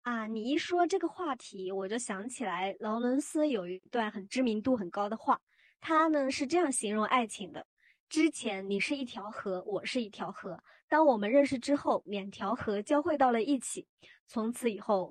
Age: 20-39